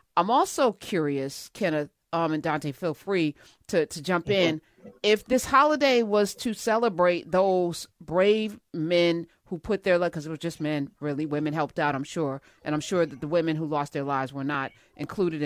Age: 40-59